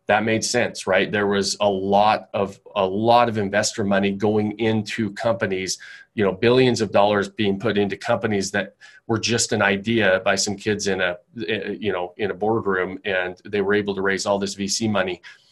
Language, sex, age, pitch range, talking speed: English, male, 30-49, 100-110 Hz, 195 wpm